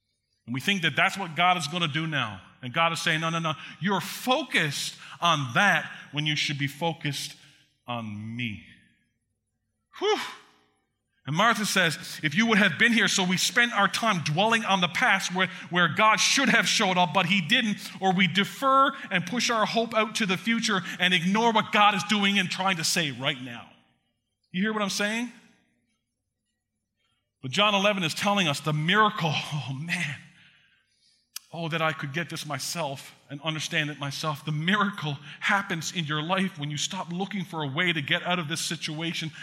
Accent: American